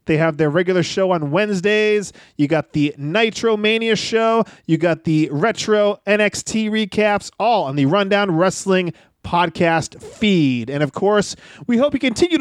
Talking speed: 160 wpm